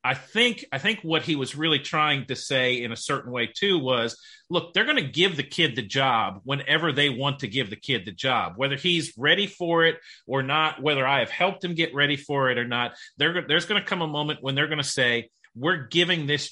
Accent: American